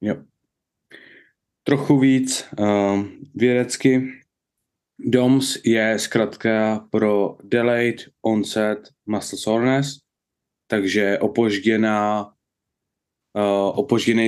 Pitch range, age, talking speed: 110-135 Hz, 20-39, 65 wpm